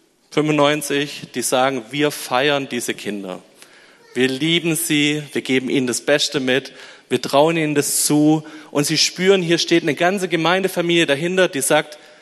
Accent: German